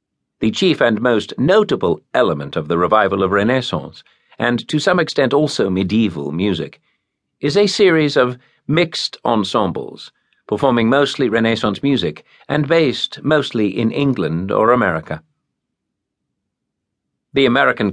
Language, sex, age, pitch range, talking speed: English, male, 50-69, 100-145 Hz, 125 wpm